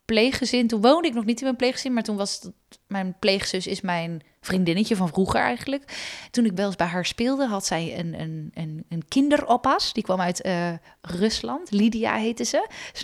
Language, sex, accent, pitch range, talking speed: Dutch, female, Dutch, 195-270 Hz, 200 wpm